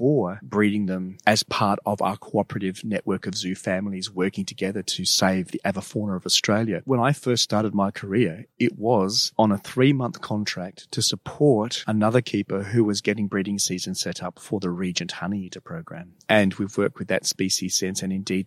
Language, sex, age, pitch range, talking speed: English, male, 30-49, 100-130 Hz, 190 wpm